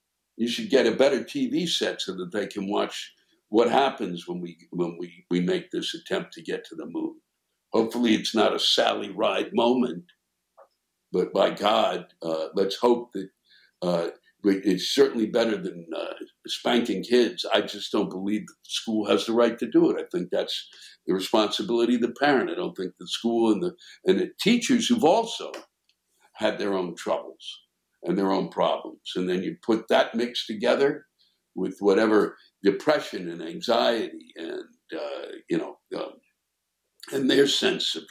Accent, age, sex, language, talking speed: American, 60-79, male, English, 175 wpm